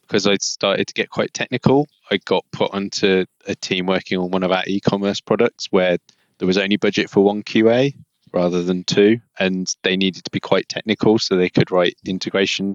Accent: British